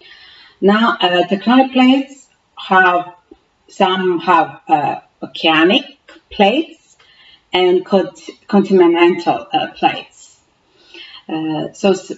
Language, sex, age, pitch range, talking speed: English, female, 40-59, 180-245 Hz, 80 wpm